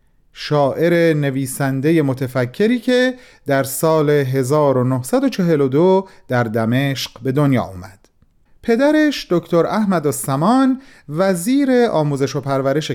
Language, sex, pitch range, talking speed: Persian, male, 130-200 Hz, 95 wpm